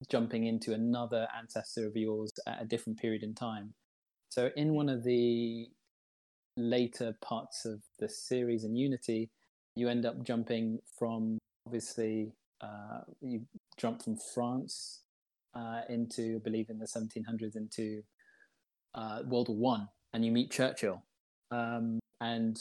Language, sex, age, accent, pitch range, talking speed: English, male, 20-39, British, 110-120 Hz, 140 wpm